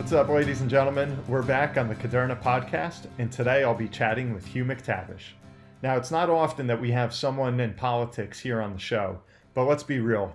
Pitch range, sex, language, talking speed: 110-130 Hz, male, English, 215 wpm